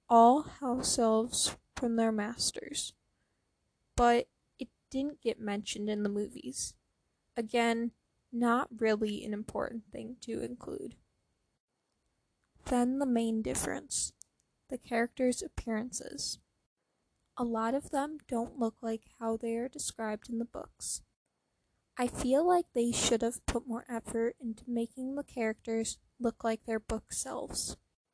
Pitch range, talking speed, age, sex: 225-255 Hz, 125 wpm, 10-29, female